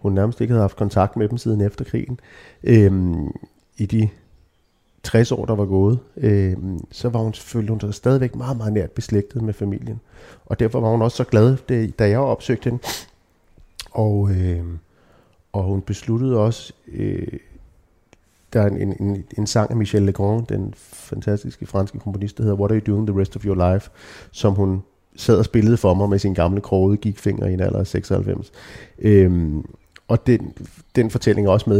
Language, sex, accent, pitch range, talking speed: Danish, male, native, 100-120 Hz, 185 wpm